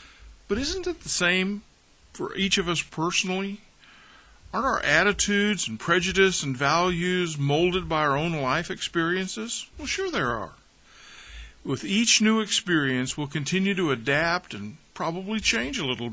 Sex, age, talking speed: male, 50-69, 150 wpm